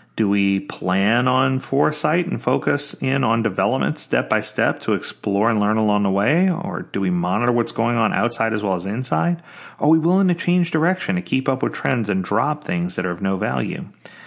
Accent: American